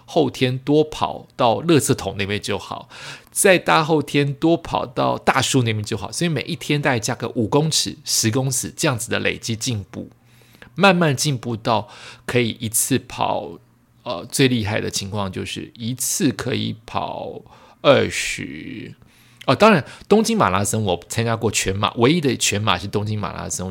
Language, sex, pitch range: Chinese, male, 100-140 Hz